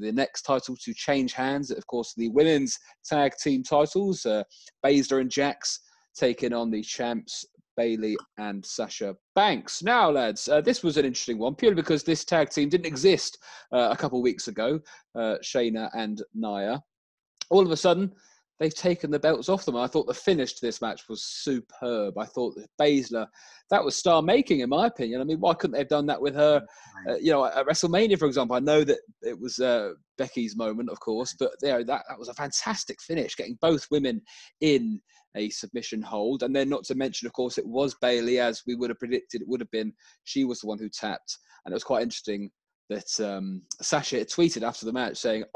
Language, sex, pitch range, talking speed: English, male, 115-155 Hz, 210 wpm